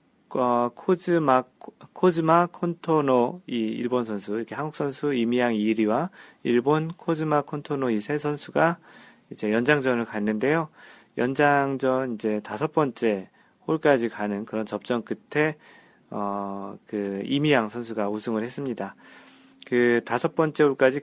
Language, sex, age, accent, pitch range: Korean, male, 40-59, native, 115-150 Hz